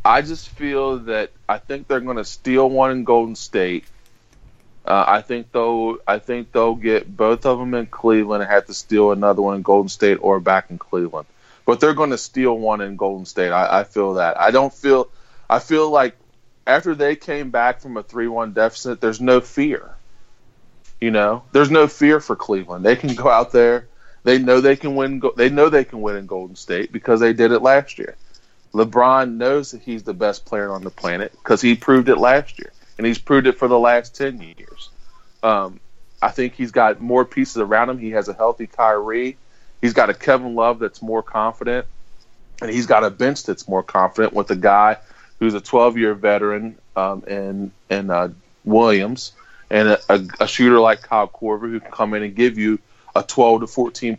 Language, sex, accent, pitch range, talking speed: English, male, American, 105-125 Hz, 205 wpm